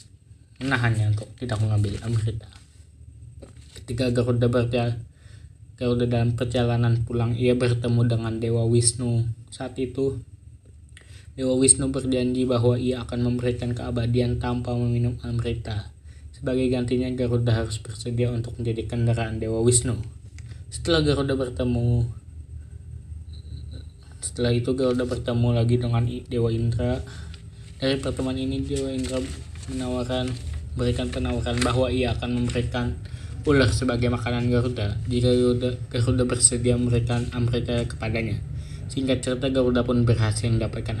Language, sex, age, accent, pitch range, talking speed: Indonesian, male, 20-39, native, 110-125 Hz, 115 wpm